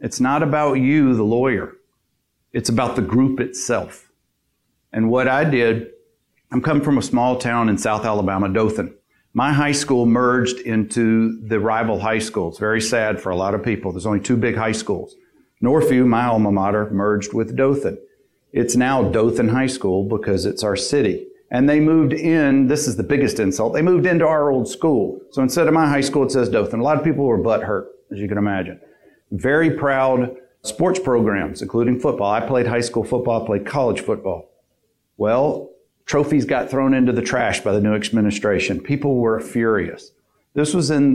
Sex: male